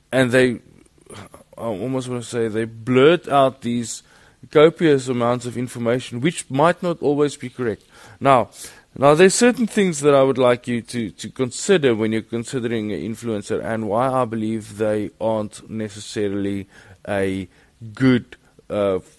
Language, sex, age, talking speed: English, male, 20-39, 155 wpm